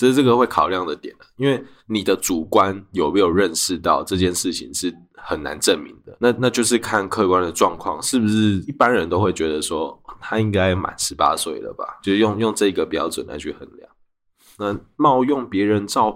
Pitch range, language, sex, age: 90-115 Hz, Chinese, male, 20-39